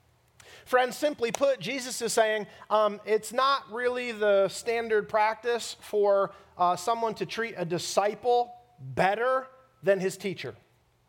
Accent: American